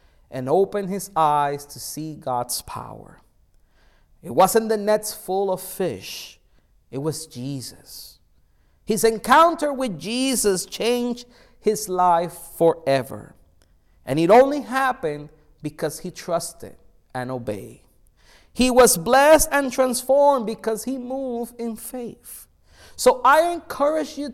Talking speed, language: 120 wpm, English